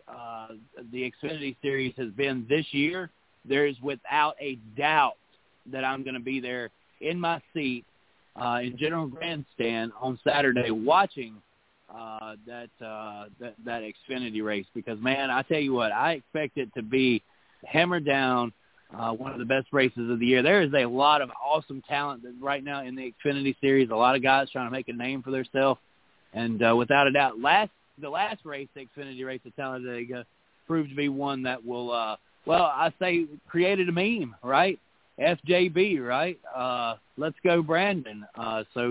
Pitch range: 120-155 Hz